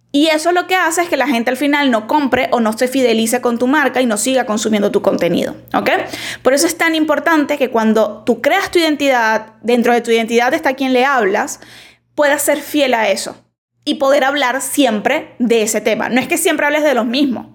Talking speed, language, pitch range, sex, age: 225 wpm, Spanish, 230-295 Hz, female, 10-29